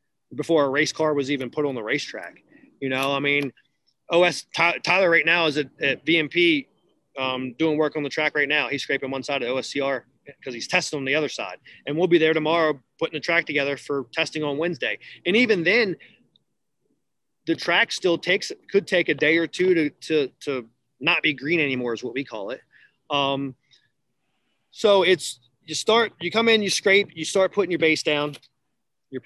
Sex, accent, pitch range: male, American, 140-170 Hz